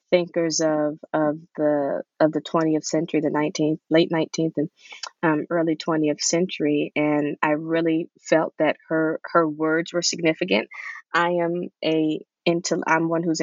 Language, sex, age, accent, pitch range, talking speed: English, female, 20-39, American, 155-175 Hz, 150 wpm